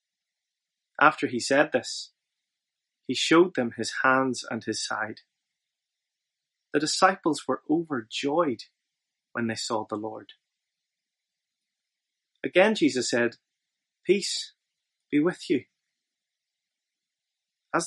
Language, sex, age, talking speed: English, male, 30-49, 95 wpm